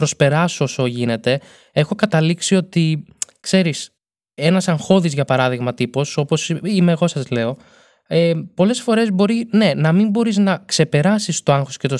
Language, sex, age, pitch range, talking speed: Greek, male, 20-39, 140-175 Hz, 155 wpm